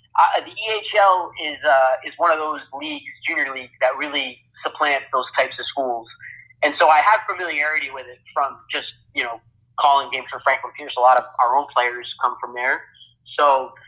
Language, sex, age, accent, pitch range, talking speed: English, male, 30-49, American, 125-150 Hz, 195 wpm